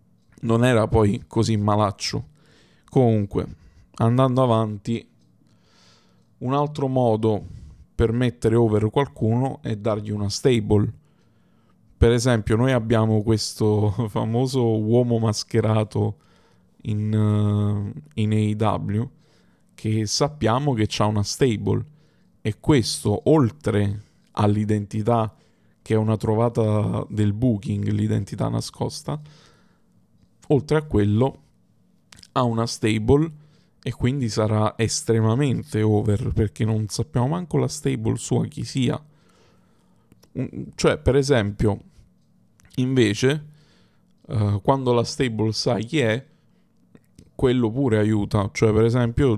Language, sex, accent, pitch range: Italian, male, native, 105-130 Hz